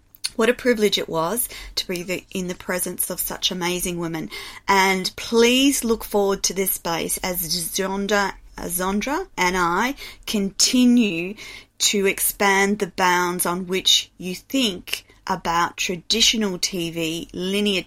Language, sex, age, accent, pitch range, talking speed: English, female, 30-49, Australian, 170-205 Hz, 130 wpm